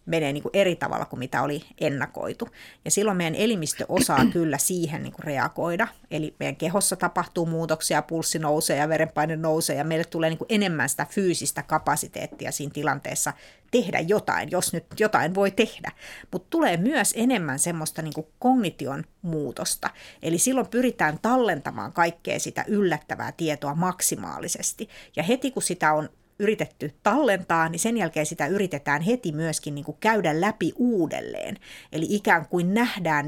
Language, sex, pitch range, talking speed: Finnish, female, 155-205 Hz, 150 wpm